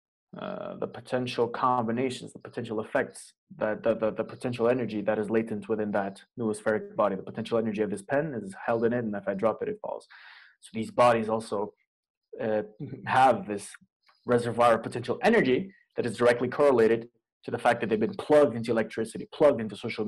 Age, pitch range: 20-39, 110-125 Hz